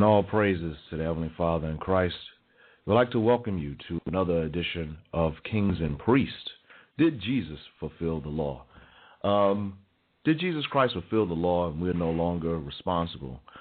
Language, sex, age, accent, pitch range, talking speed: English, male, 40-59, American, 85-105 Hz, 165 wpm